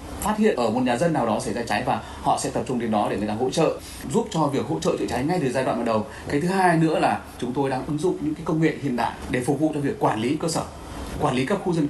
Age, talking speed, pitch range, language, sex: 20-39, 335 wpm, 110-165 Hz, Vietnamese, male